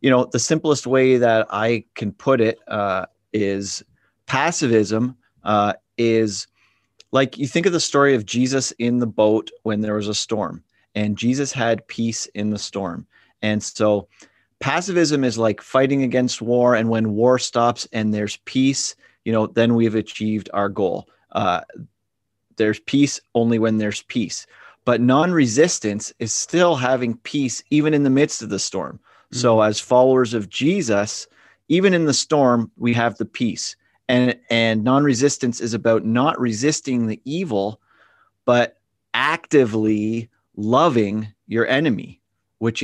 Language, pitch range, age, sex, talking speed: English, 110-130 Hz, 30-49, male, 150 wpm